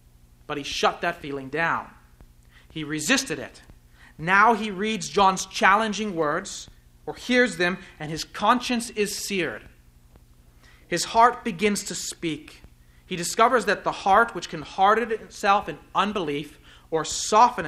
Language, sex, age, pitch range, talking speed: English, male, 40-59, 140-195 Hz, 140 wpm